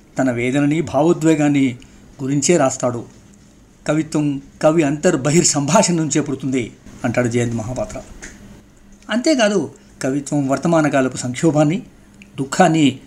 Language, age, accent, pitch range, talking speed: Telugu, 50-69, native, 125-170 Hz, 80 wpm